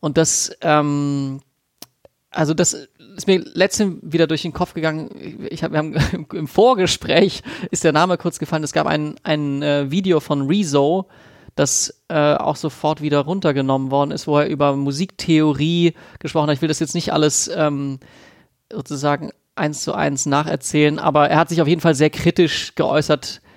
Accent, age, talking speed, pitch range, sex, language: German, 30-49, 160 wpm, 145-165 Hz, male, German